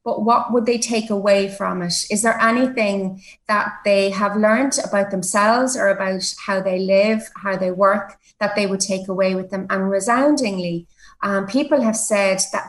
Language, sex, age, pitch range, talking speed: English, female, 30-49, 195-225 Hz, 185 wpm